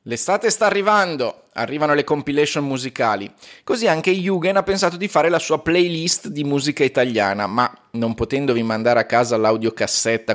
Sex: male